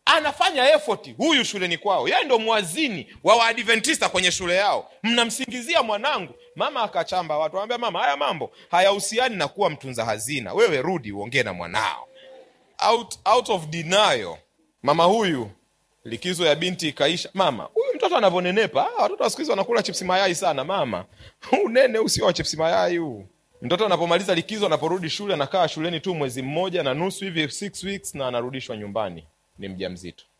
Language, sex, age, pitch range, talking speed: Swahili, male, 30-49, 135-195 Hz, 160 wpm